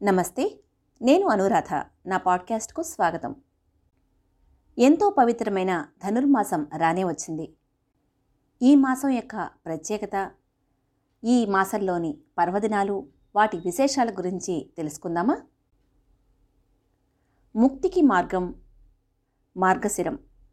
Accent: native